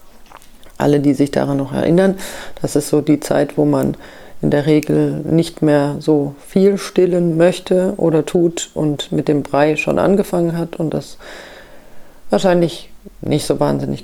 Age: 40-59